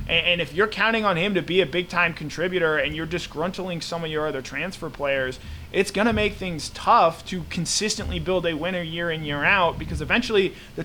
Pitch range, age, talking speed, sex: 145-180 Hz, 20-39, 210 wpm, male